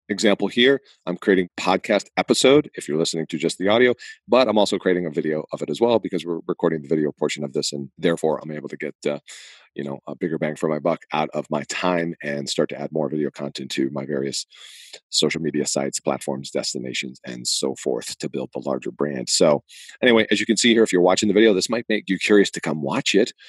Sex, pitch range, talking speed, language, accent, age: male, 75-105 Hz, 240 wpm, English, American, 40-59